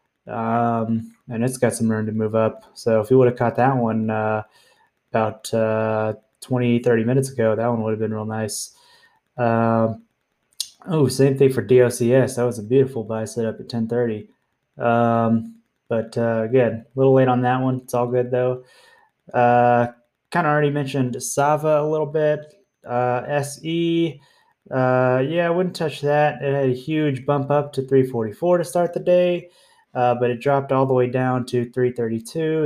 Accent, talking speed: American, 180 wpm